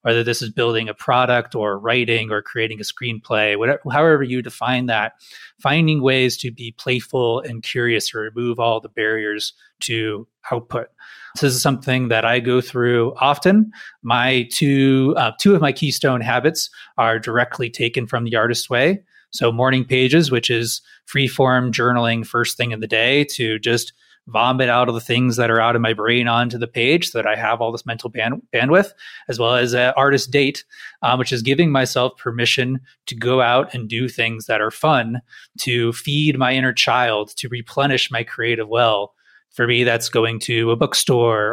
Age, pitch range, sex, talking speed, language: 30-49, 115-130 Hz, male, 185 wpm, English